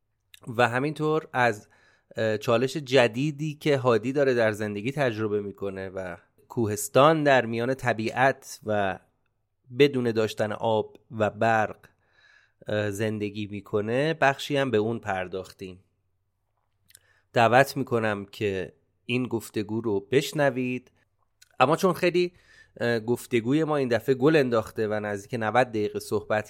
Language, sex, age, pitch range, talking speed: Persian, male, 30-49, 105-135 Hz, 115 wpm